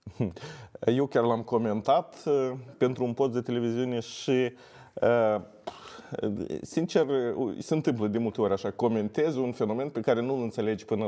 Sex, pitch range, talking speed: male, 110-155 Hz, 135 wpm